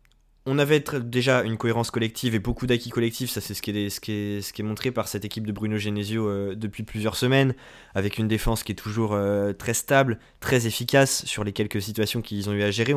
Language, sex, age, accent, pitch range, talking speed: French, male, 20-39, French, 110-125 Hz, 240 wpm